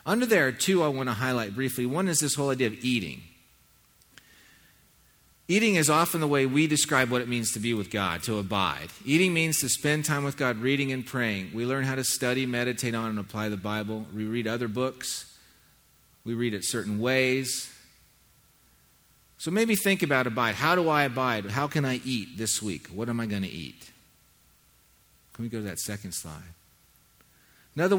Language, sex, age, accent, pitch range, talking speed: English, male, 40-59, American, 110-145 Hz, 195 wpm